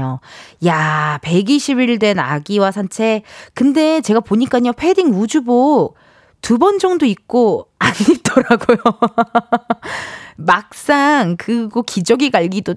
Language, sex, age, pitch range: Korean, female, 20-39, 190-295 Hz